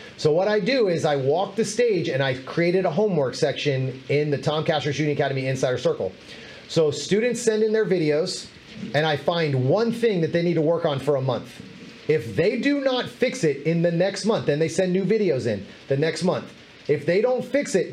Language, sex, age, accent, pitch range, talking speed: English, male, 30-49, American, 150-210 Hz, 225 wpm